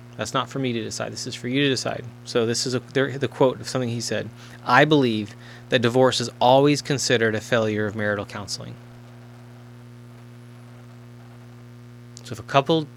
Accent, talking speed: American, 170 wpm